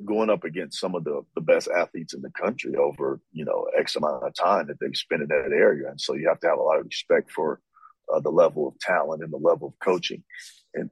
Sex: male